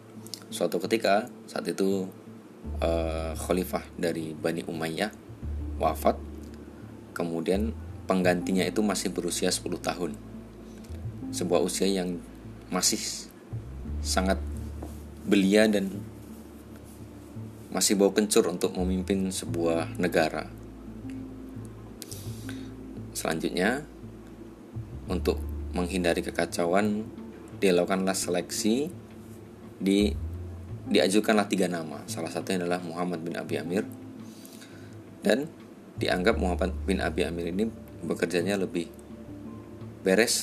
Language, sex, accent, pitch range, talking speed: Indonesian, male, native, 85-110 Hz, 85 wpm